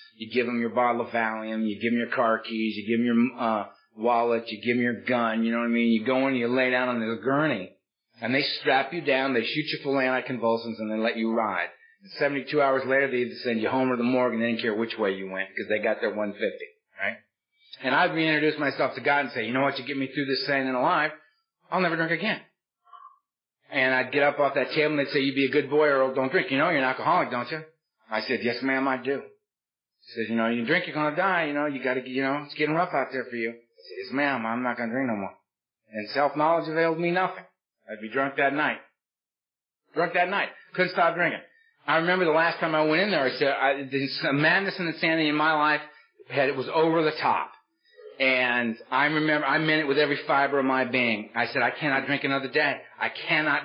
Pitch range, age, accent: 120-155 Hz, 40-59, American